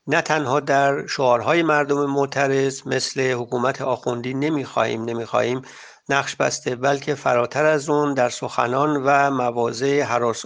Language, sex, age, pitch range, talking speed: English, male, 50-69, 125-145 Hz, 125 wpm